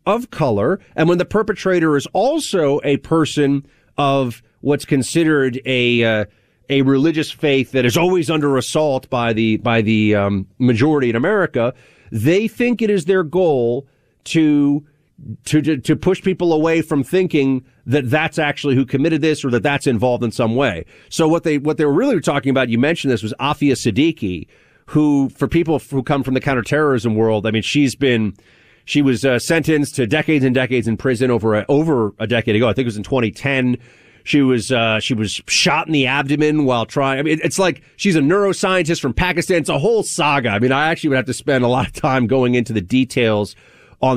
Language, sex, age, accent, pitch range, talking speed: English, male, 40-59, American, 120-155 Hz, 200 wpm